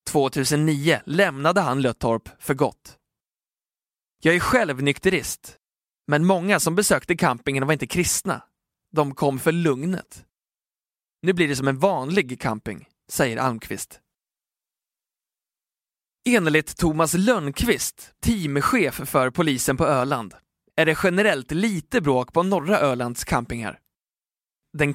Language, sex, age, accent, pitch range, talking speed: Swedish, male, 20-39, native, 135-170 Hz, 120 wpm